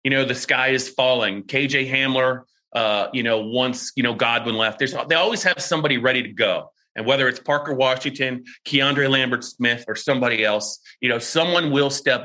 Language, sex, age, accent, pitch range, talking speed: English, male, 30-49, American, 125-155 Hz, 190 wpm